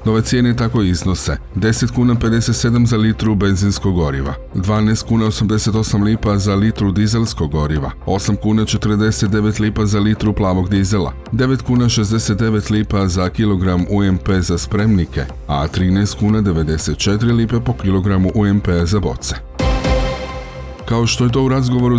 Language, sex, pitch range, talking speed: Croatian, male, 85-105 Hz, 140 wpm